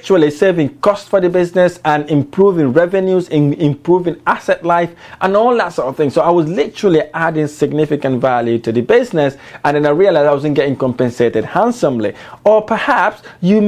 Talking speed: 175 wpm